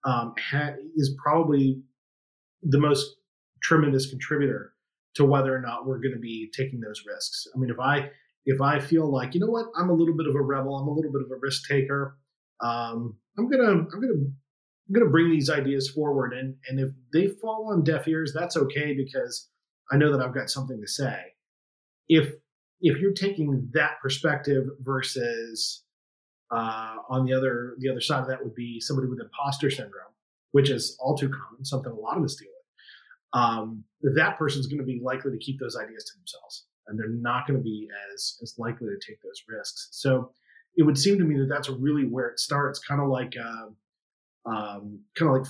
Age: 30-49